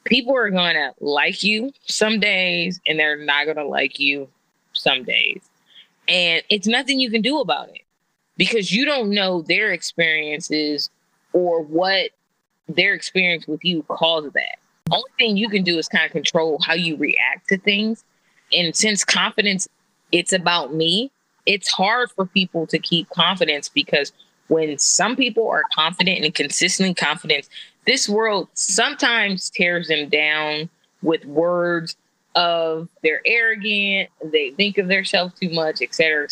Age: 20-39